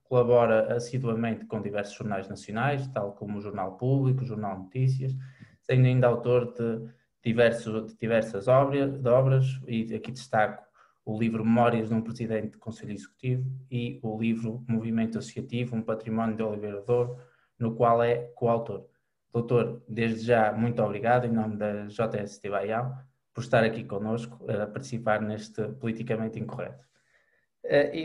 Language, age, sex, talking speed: Portuguese, 20-39, male, 150 wpm